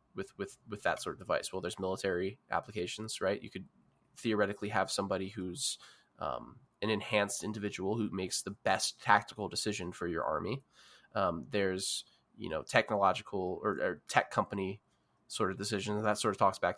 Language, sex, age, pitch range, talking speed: English, male, 20-39, 95-110 Hz, 170 wpm